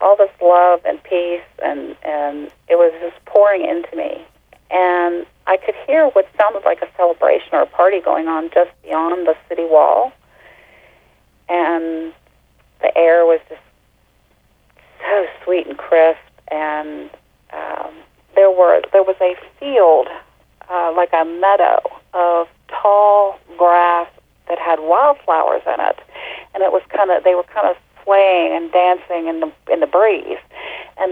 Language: English